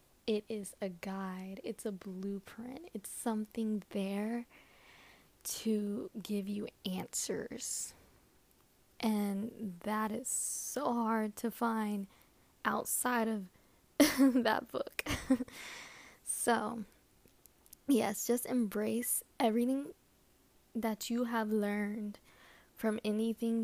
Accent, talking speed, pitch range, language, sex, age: American, 90 wpm, 210-235 Hz, English, female, 10-29